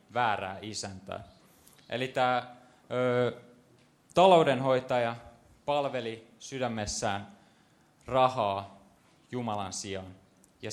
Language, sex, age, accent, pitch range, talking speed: Finnish, male, 20-39, native, 100-125 Hz, 60 wpm